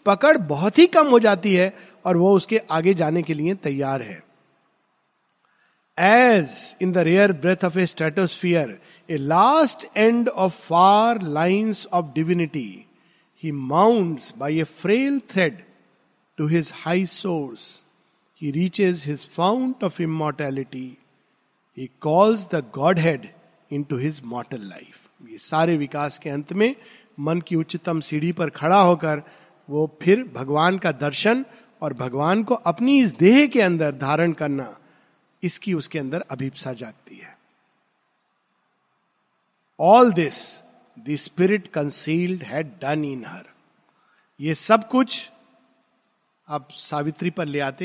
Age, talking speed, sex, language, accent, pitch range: 50-69, 110 wpm, male, Hindi, native, 150-200 Hz